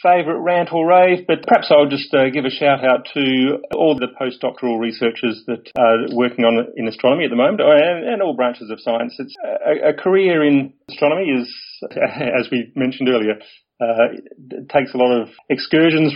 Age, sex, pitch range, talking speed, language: 40-59, male, 120-140 Hz, 185 wpm, English